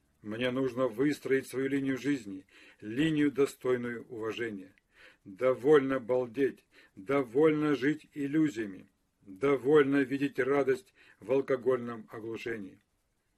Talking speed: 90 wpm